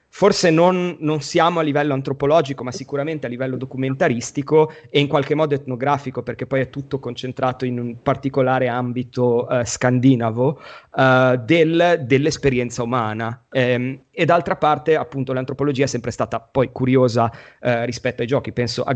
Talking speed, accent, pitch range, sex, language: 150 wpm, native, 120-140 Hz, male, Italian